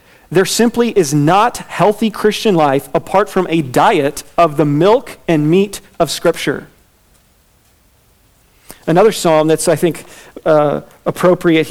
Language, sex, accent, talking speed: English, male, American, 130 wpm